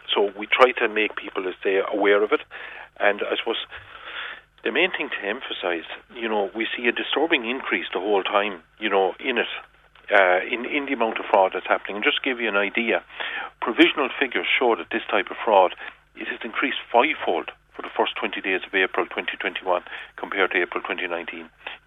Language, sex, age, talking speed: English, male, 40-59, 200 wpm